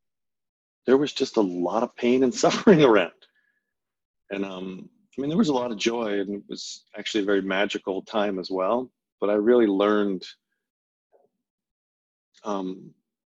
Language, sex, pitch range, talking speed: English, male, 95-110 Hz, 155 wpm